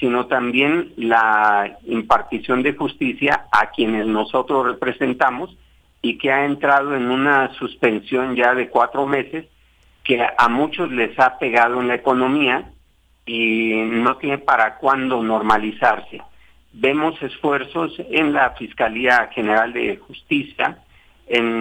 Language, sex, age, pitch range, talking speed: Spanish, male, 50-69, 115-140 Hz, 125 wpm